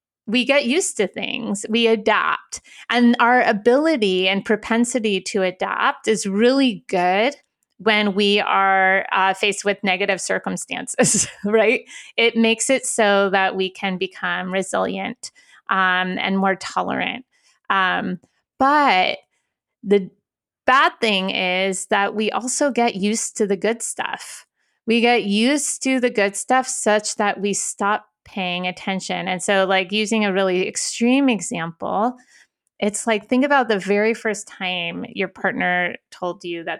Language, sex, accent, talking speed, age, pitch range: English, female, American, 145 wpm, 20-39, 195-240 Hz